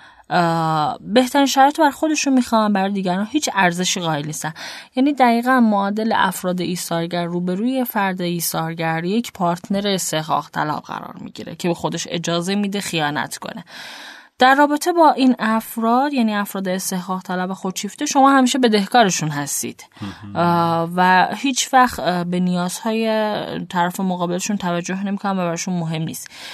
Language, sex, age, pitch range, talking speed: Persian, female, 10-29, 165-230 Hz, 140 wpm